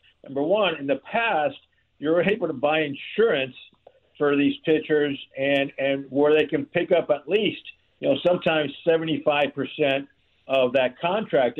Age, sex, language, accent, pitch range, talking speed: 60-79, male, English, American, 140-175 Hz, 155 wpm